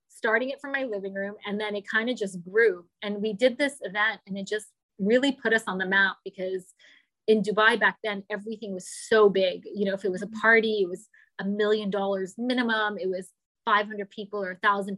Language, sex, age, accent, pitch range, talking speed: English, female, 20-39, American, 195-225 Hz, 225 wpm